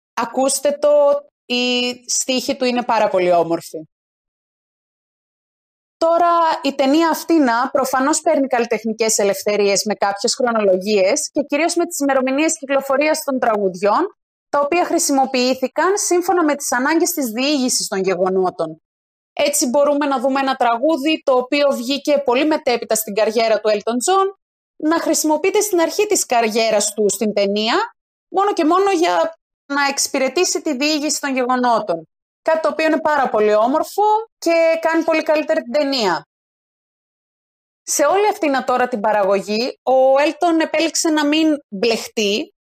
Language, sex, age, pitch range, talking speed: Greek, female, 30-49, 245-315 Hz, 140 wpm